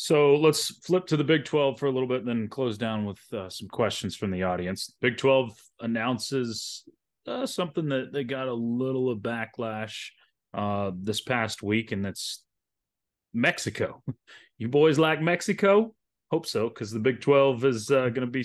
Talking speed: 180 wpm